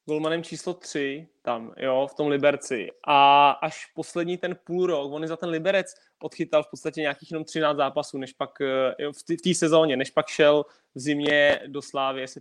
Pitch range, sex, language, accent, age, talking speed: 140-160 Hz, male, Czech, native, 20-39, 190 wpm